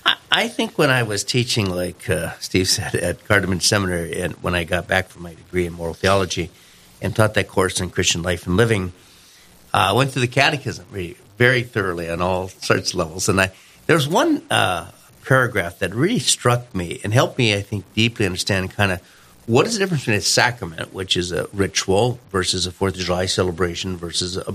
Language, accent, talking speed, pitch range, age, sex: English, American, 205 wpm, 90-120 Hz, 50-69, male